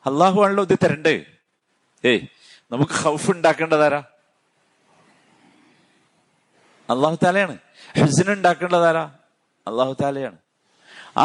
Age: 50-69